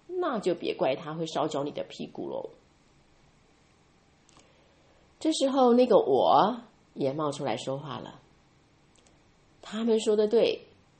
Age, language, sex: 30-49, Chinese, female